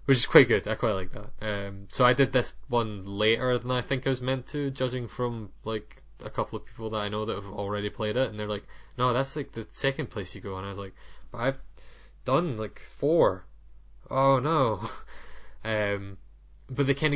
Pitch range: 100-125 Hz